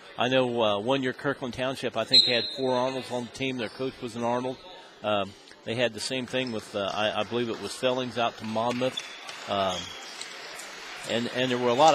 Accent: American